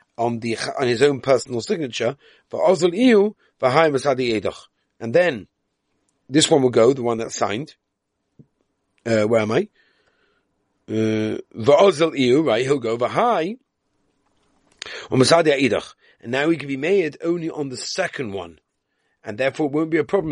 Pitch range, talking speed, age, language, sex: 115-160 Hz, 125 wpm, 40-59, English, male